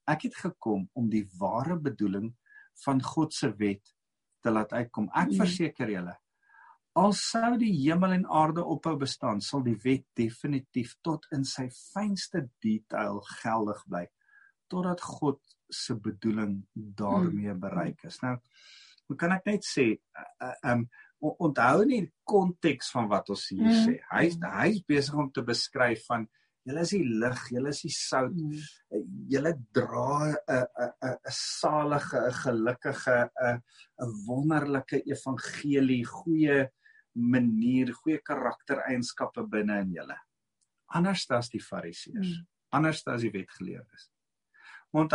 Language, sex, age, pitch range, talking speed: English, male, 50-69, 120-175 Hz, 125 wpm